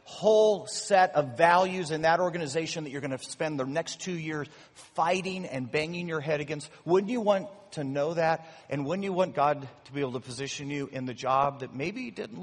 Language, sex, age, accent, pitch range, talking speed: English, male, 40-59, American, 135-175 Hz, 215 wpm